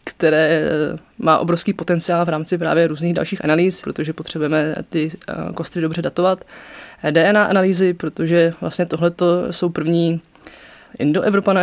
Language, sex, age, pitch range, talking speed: Czech, female, 20-39, 160-185 Hz, 125 wpm